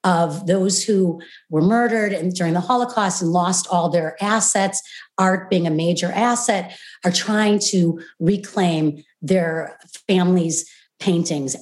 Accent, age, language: American, 40-59, English